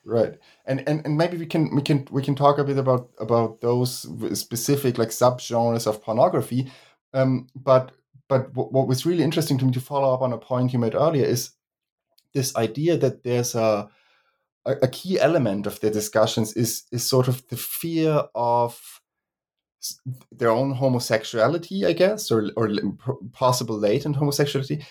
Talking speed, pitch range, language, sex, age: 170 wpm, 110-135 Hz, English, male, 30-49